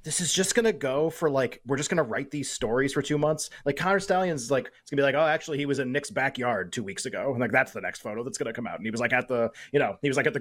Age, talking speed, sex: 30-49, 345 wpm, male